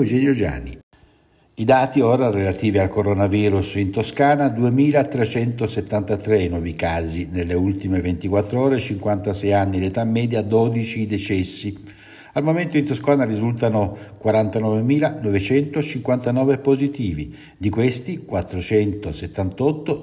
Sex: male